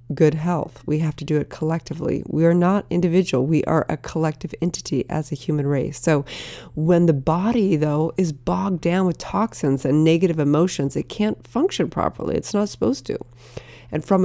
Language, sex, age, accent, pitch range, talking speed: English, female, 30-49, American, 145-180 Hz, 185 wpm